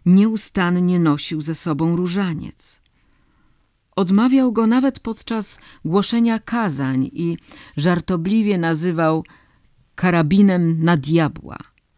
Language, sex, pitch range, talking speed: Polish, female, 155-195 Hz, 85 wpm